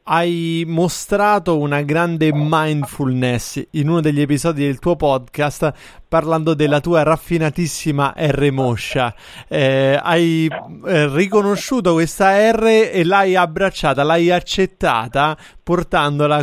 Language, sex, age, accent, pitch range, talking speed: Italian, male, 30-49, native, 150-175 Hz, 110 wpm